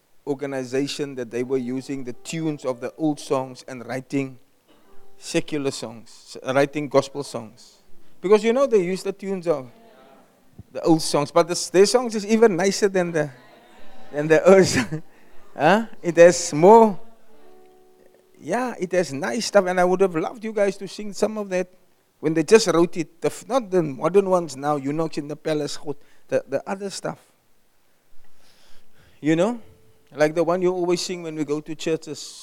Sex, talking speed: male, 180 wpm